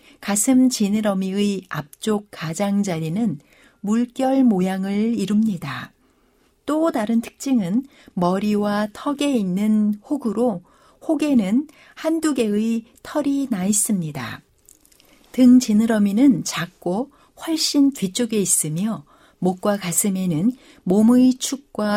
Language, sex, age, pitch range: Korean, female, 60-79, 195-270 Hz